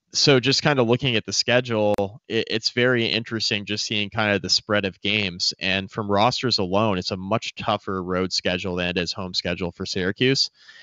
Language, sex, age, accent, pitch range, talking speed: English, male, 20-39, American, 100-125 Hz, 200 wpm